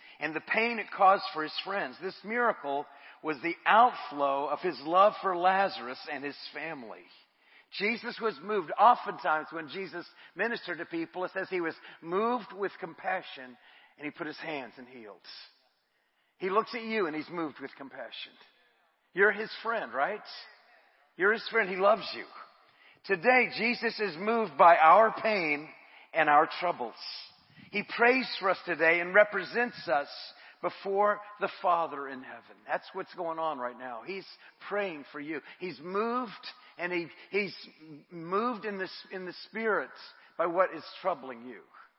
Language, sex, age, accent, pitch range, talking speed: English, male, 50-69, American, 160-210 Hz, 160 wpm